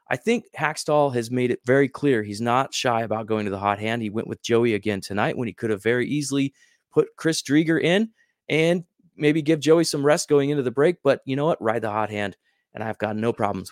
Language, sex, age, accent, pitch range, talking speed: English, male, 30-49, American, 115-170 Hz, 245 wpm